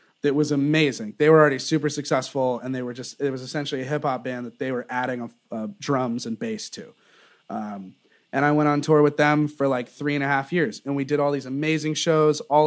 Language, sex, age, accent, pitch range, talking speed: English, male, 30-49, American, 130-155 Hz, 240 wpm